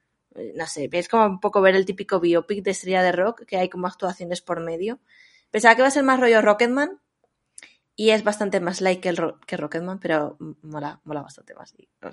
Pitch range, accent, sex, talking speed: 175-220 Hz, Spanish, female, 230 wpm